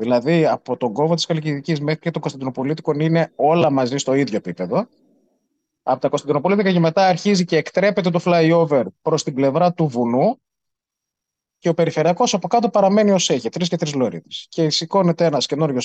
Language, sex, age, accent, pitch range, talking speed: Greek, male, 30-49, native, 140-205 Hz, 180 wpm